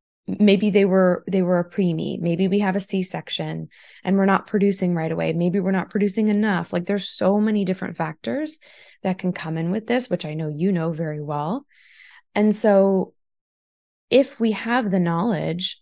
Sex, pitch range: female, 175-225 Hz